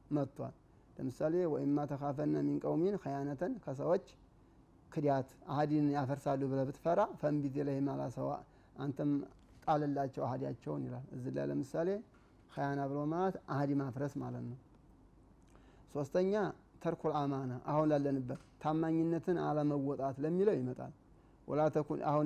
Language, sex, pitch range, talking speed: Amharic, male, 135-155 Hz, 125 wpm